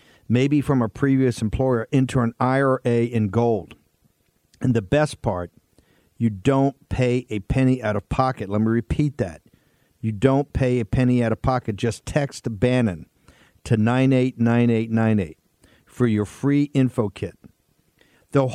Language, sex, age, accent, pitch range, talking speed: English, male, 50-69, American, 105-130 Hz, 145 wpm